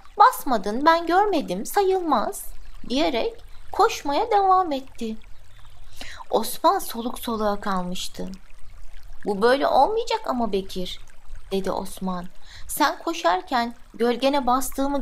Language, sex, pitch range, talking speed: Turkish, female, 190-295 Hz, 90 wpm